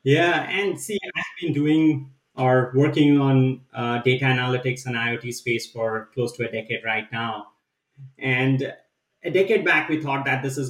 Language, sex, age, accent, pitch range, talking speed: English, male, 30-49, Indian, 125-150 Hz, 175 wpm